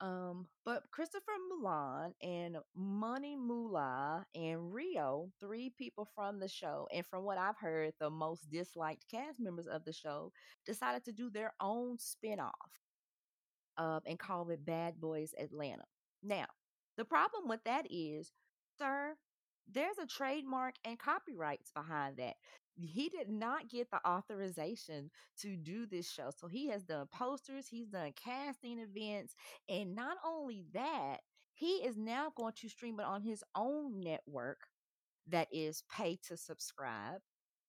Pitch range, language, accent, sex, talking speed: 165-255 Hz, English, American, female, 145 wpm